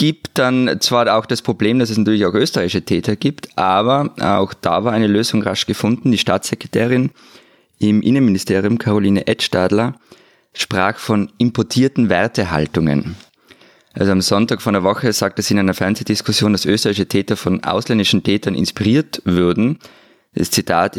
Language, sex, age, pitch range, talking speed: German, male, 20-39, 100-120 Hz, 150 wpm